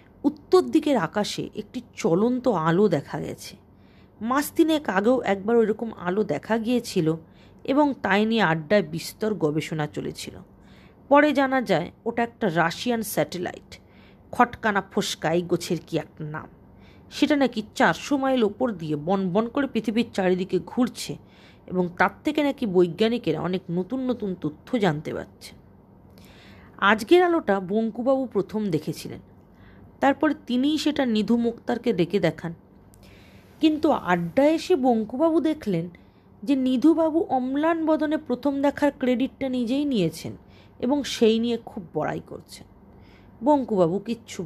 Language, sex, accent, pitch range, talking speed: Bengali, female, native, 165-260 Hz, 125 wpm